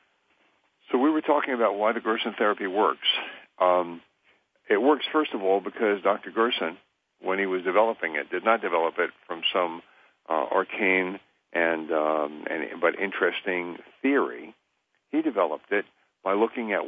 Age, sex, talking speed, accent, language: 60-79, male, 155 wpm, American, English